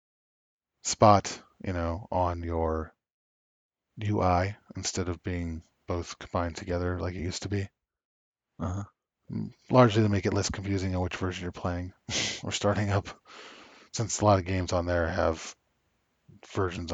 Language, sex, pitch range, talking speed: English, male, 85-110 Hz, 145 wpm